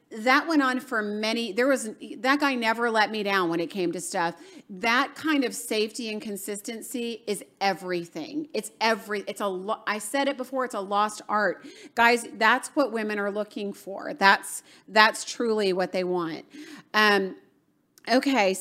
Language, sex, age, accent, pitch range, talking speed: English, female, 40-59, American, 205-260 Hz, 170 wpm